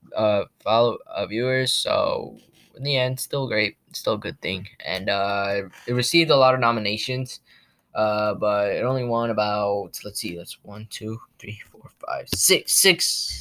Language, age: English, 10-29